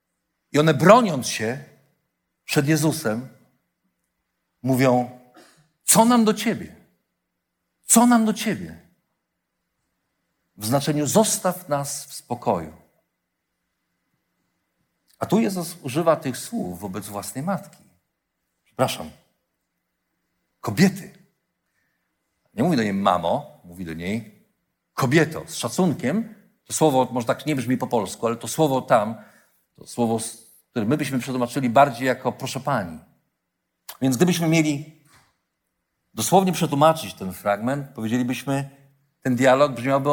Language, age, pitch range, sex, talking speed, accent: Polish, 50-69, 120-170 Hz, male, 115 wpm, native